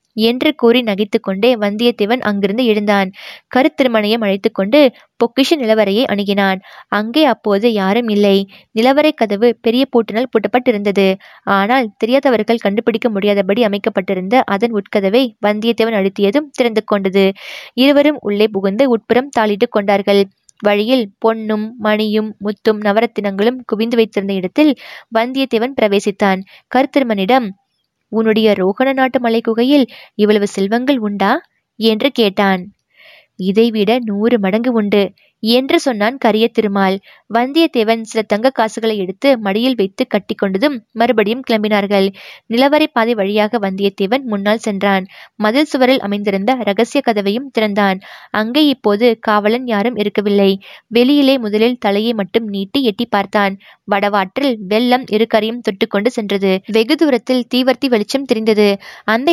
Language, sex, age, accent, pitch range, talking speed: Tamil, female, 20-39, native, 205-245 Hz, 105 wpm